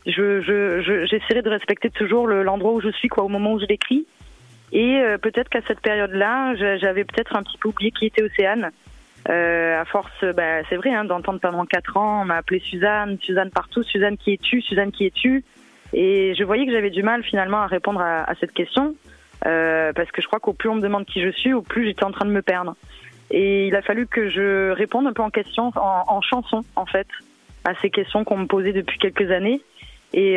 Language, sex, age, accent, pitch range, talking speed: French, female, 20-39, French, 185-220 Hz, 230 wpm